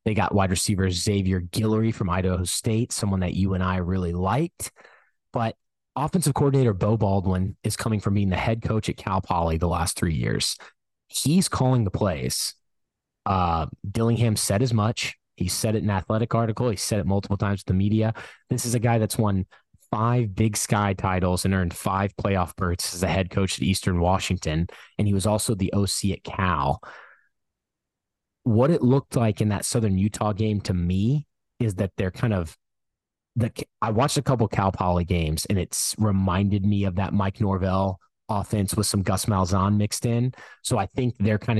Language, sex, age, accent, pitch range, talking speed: English, male, 20-39, American, 95-110 Hz, 190 wpm